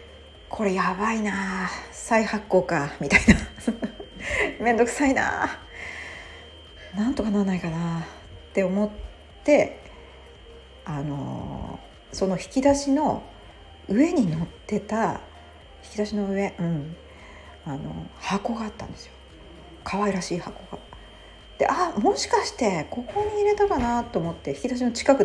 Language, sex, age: Japanese, female, 40-59